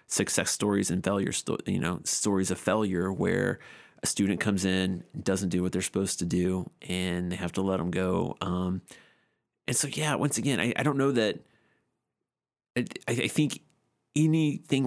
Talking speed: 180 wpm